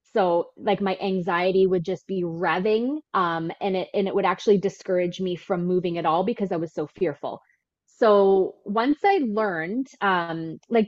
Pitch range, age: 180-225 Hz, 20-39